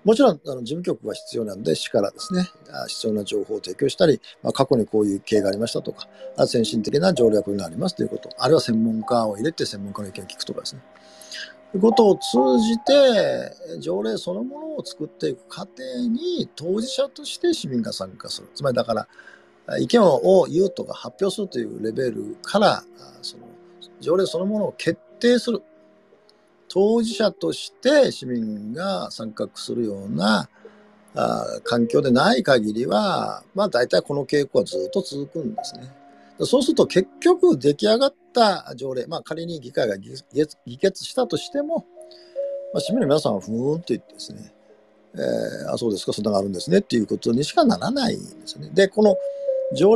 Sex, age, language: male, 50-69, Japanese